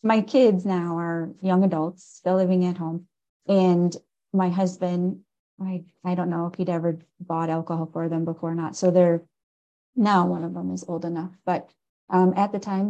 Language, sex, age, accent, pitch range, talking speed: English, female, 30-49, American, 170-190 Hz, 190 wpm